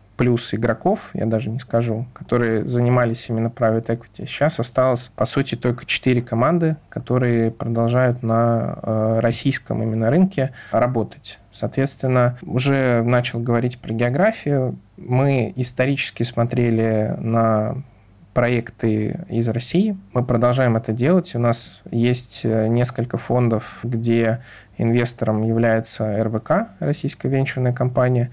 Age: 20-39